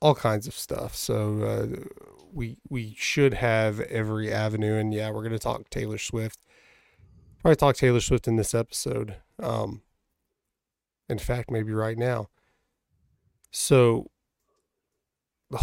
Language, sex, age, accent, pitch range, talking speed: English, male, 30-49, American, 110-120 Hz, 135 wpm